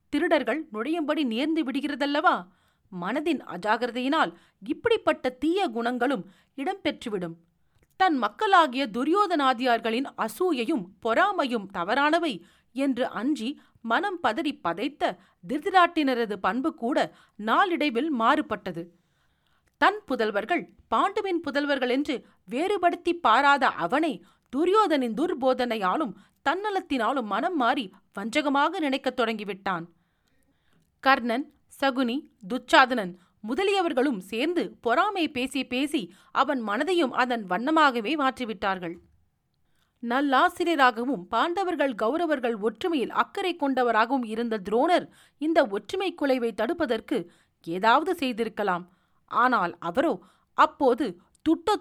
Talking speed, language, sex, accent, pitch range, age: 85 wpm, Tamil, female, native, 225-320 Hz, 40-59